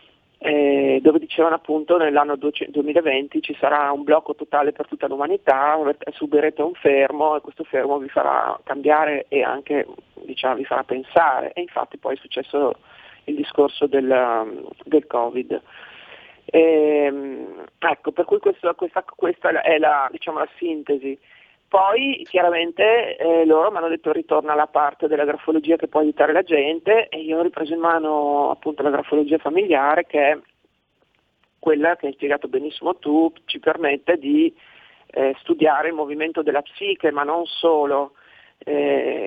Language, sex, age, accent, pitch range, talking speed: Italian, male, 40-59, native, 145-165 Hz, 150 wpm